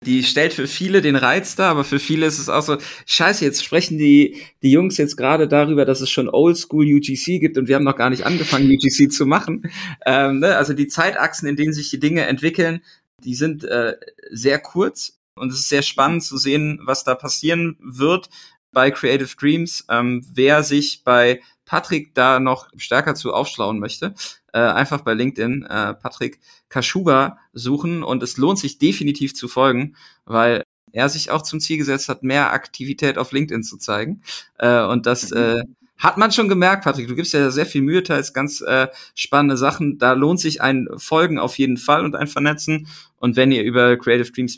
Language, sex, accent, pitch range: German, male, German, 130-155 Hz